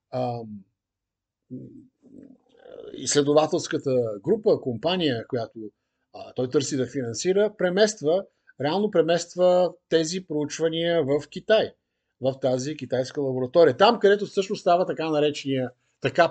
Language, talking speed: Bulgarian, 95 wpm